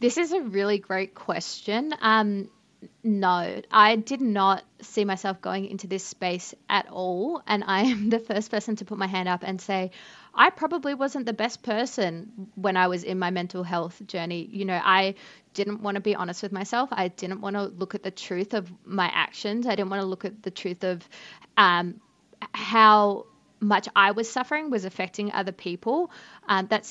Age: 20-39